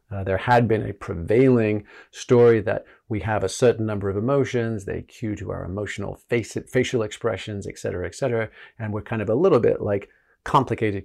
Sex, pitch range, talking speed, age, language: male, 100-125 Hz, 190 wpm, 40-59, English